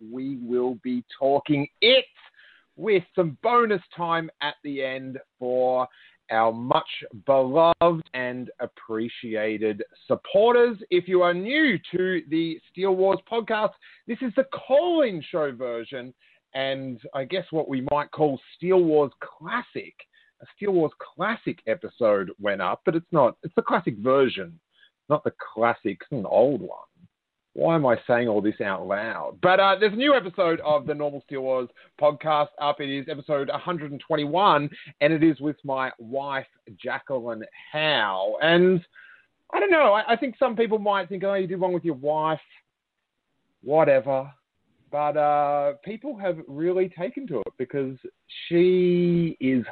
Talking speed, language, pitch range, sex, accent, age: 155 wpm, English, 135-190 Hz, male, Australian, 40-59